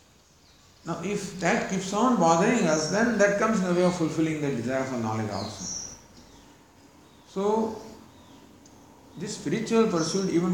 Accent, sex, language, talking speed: Indian, male, English, 140 wpm